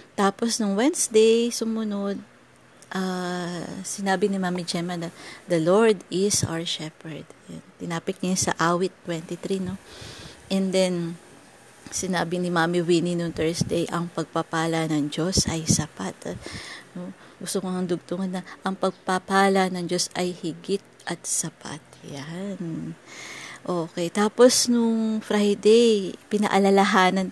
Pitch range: 165-195 Hz